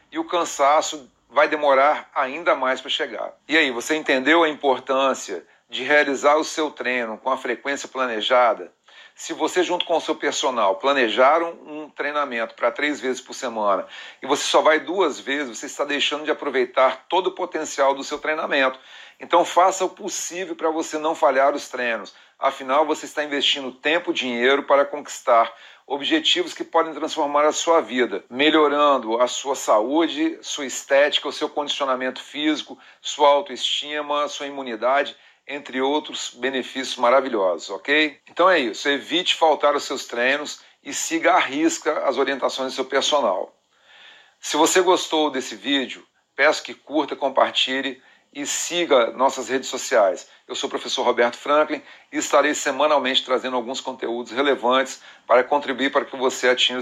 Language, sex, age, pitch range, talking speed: Portuguese, male, 40-59, 130-155 Hz, 160 wpm